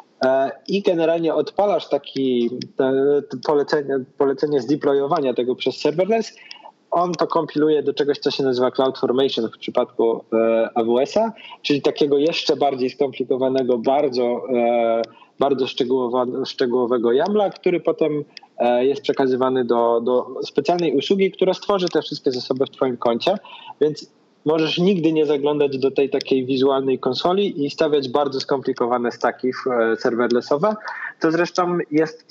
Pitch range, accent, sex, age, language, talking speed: 130-155 Hz, native, male, 20-39, Polish, 130 wpm